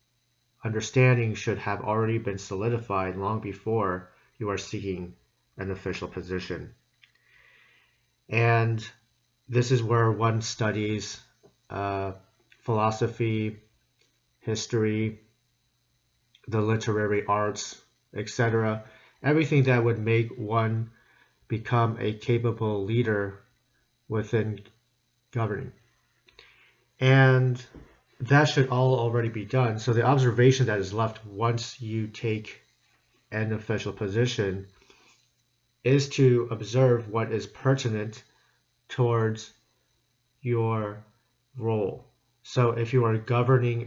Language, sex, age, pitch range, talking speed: English, male, 40-59, 105-125 Hz, 95 wpm